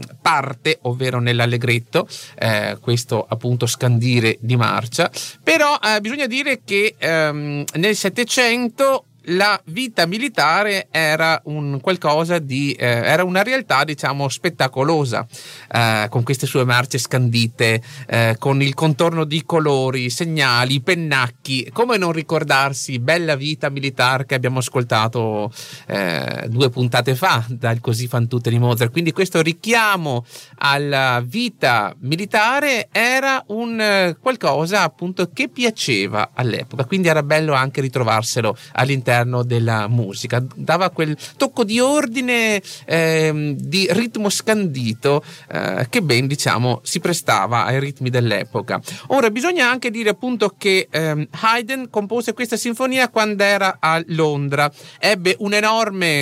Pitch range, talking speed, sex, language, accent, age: 130-210 Hz, 125 wpm, male, Italian, native, 30-49